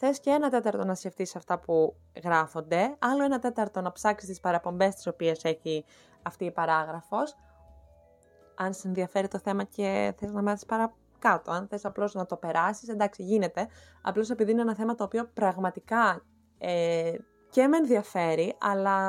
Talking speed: 165 wpm